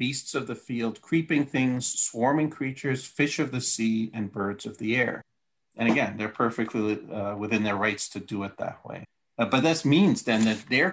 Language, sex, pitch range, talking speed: English, male, 110-135 Hz, 205 wpm